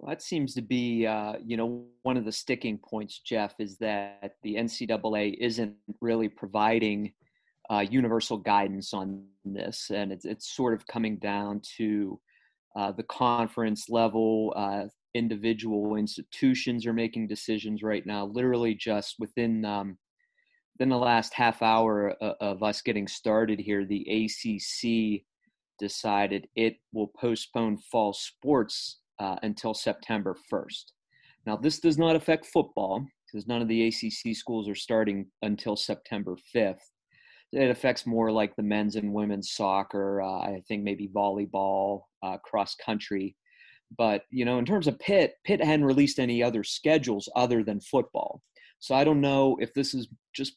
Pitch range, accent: 105-125 Hz, American